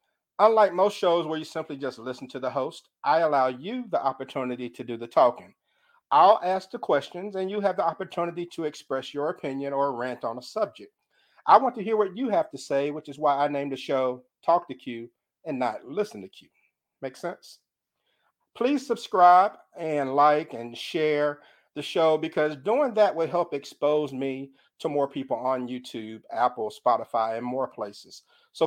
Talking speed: 190 wpm